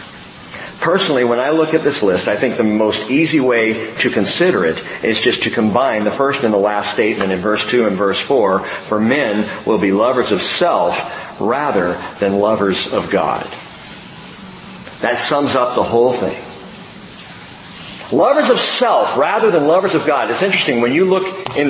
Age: 50-69